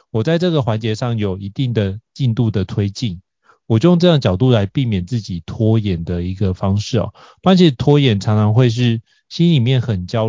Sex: male